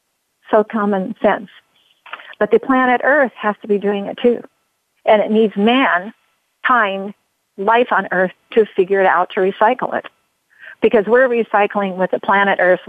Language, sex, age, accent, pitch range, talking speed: English, female, 50-69, American, 190-230 Hz, 165 wpm